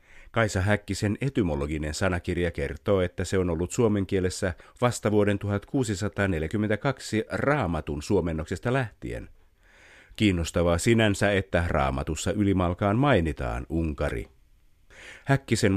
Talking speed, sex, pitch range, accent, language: 95 wpm, male, 80-105 Hz, native, Finnish